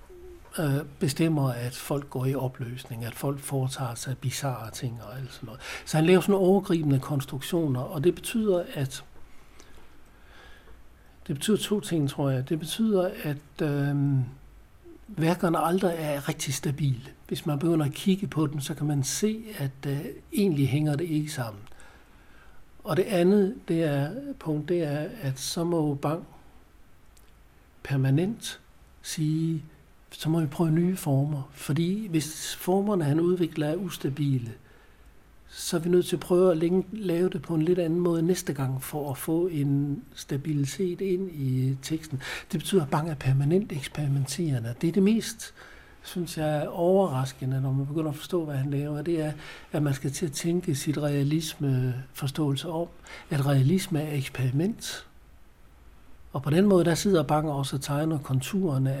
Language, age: Danish, 60-79